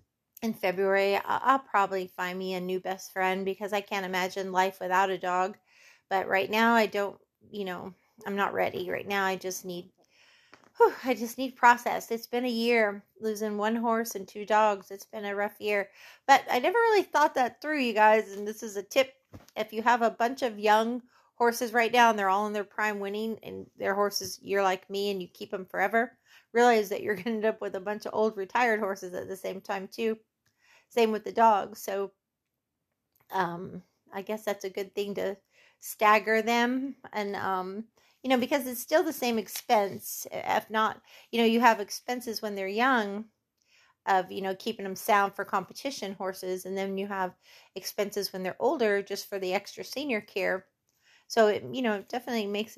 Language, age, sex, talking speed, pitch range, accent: English, 30-49, female, 205 wpm, 195-230 Hz, American